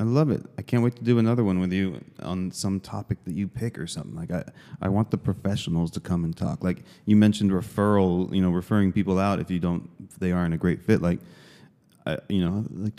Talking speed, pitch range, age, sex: 240 wpm, 80-100 Hz, 30-49, male